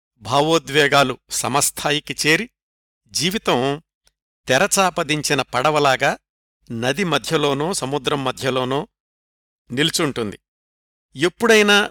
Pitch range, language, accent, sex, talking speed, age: 135-180 Hz, Telugu, native, male, 60 wpm, 50-69